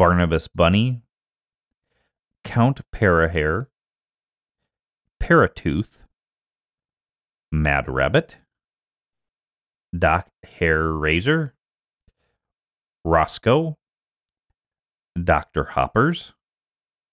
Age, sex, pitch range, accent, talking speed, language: 40-59, male, 85-115 Hz, American, 45 wpm, English